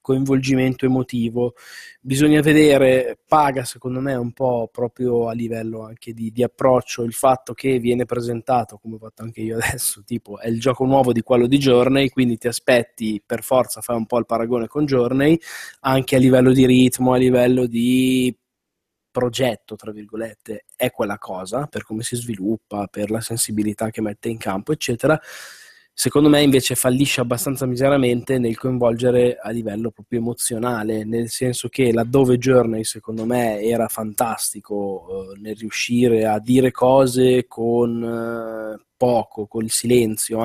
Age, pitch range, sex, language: 20-39, 115-130 Hz, male, Italian